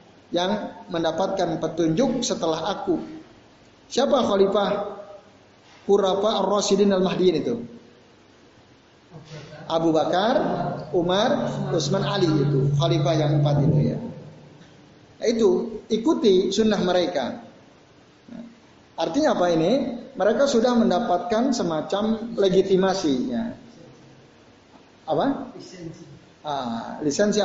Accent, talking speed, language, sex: native, 80 wpm, Indonesian, male